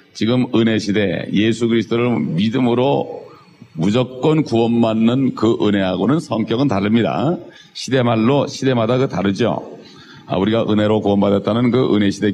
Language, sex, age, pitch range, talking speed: English, male, 40-59, 105-120 Hz, 95 wpm